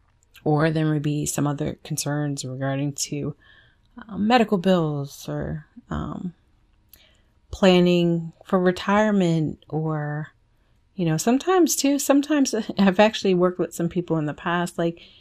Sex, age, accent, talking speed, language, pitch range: female, 30-49, American, 130 wpm, English, 140-190 Hz